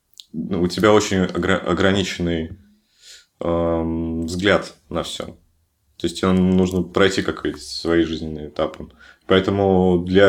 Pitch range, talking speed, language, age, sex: 85-100 Hz, 110 wpm, Russian, 20-39, male